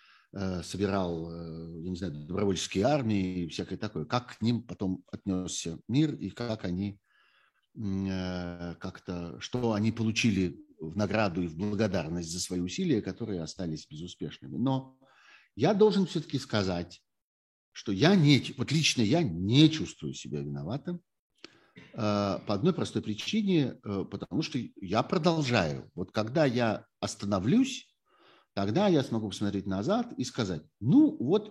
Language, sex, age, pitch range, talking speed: Russian, male, 50-69, 95-130 Hz, 130 wpm